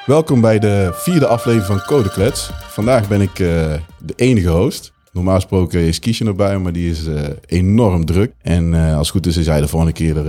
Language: Dutch